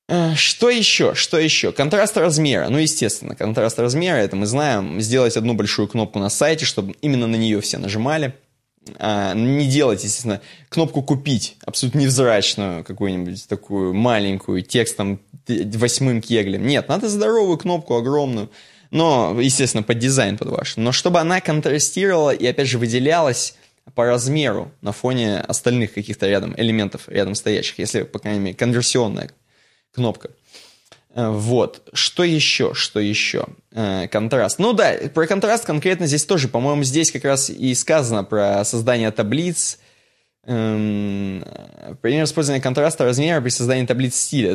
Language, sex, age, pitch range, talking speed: Russian, male, 20-39, 110-145 Hz, 140 wpm